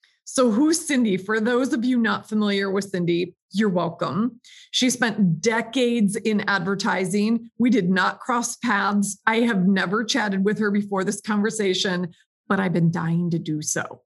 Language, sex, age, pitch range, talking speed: English, female, 30-49, 190-235 Hz, 165 wpm